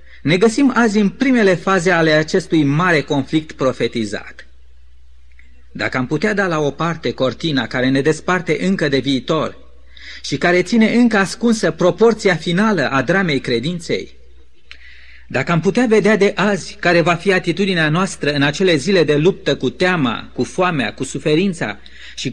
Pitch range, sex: 130-185 Hz, male